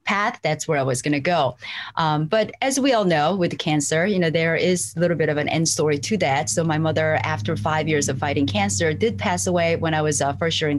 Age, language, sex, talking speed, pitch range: 30-49, English, female, 260 wpm, 155-215 Hz